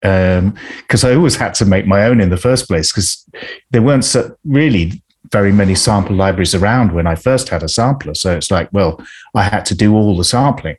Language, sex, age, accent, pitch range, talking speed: English, male, 40-59, British, 95-115 Hz, 220 wpm